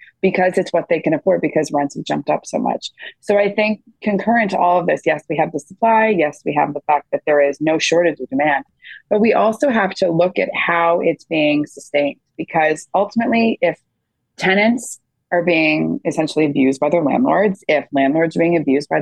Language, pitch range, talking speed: English, 150-185 Hz, 210 wpm